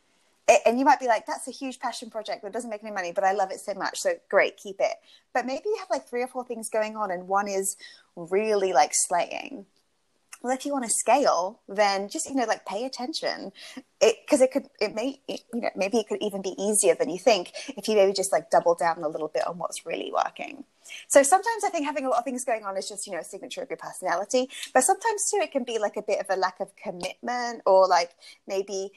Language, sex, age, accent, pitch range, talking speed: English, female, 20-39, British, 195-285 Hz, 255 wpm